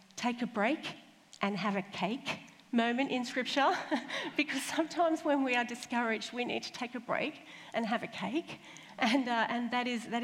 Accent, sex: Australian, female